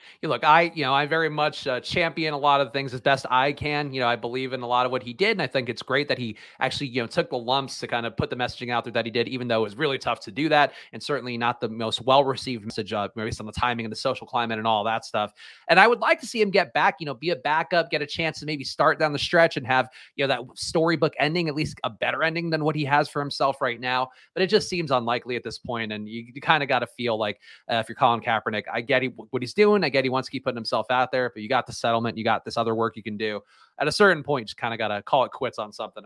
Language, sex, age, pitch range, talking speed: English, male, 30-49, 125-165 Hz, 320 wpm